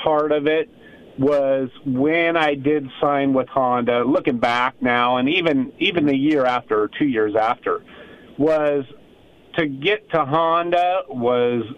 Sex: male